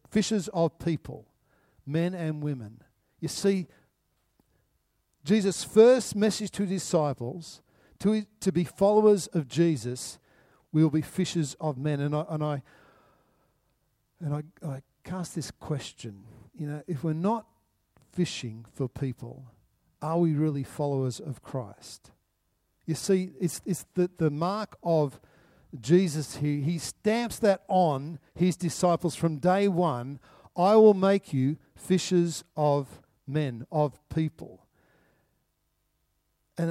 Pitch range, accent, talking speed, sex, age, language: 130-175 Hz, Australian, 130 wpm, male, 50-69, English